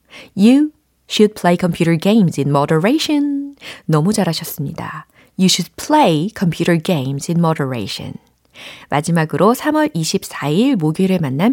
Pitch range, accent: 155-230 Hz, native